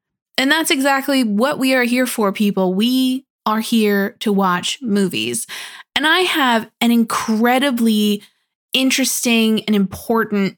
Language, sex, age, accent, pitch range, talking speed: English, female, 20-39, American, 195-240 Hz, 130 wpm